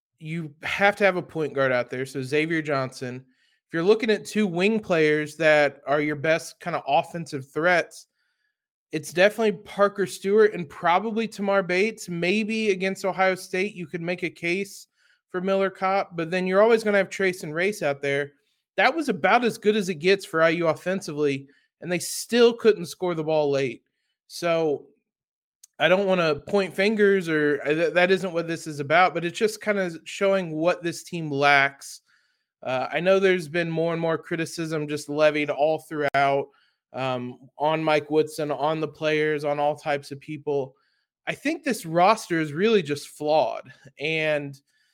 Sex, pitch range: male, 150-195 Hz